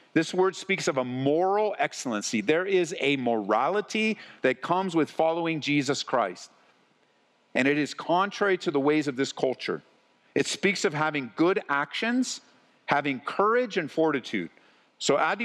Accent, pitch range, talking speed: American, 145-200 Hz, 155 wpm